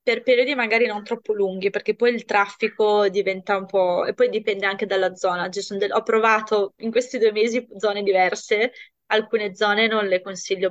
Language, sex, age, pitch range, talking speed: Italian, female, 20-39, 180-225 Hz, 185 wpm